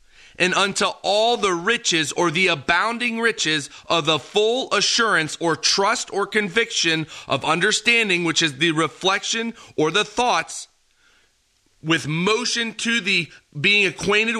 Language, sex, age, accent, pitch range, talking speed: English, male, 30-49, American, 165-210 Hz, 135 wpm